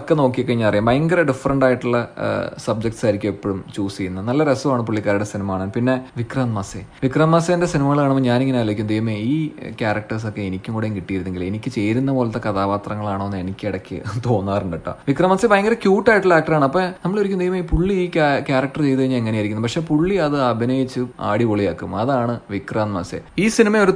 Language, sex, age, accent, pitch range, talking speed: Malayalam, male, 30-49, native, 105-145 Hz, 165 wpm